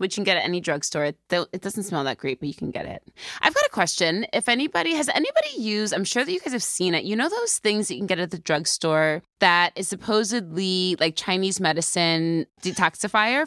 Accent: American